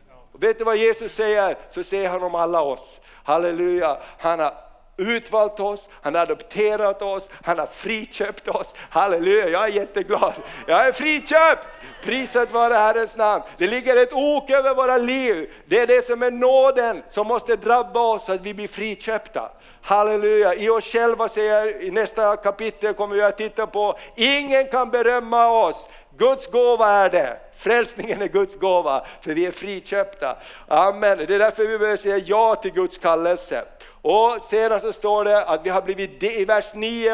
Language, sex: Swedish, male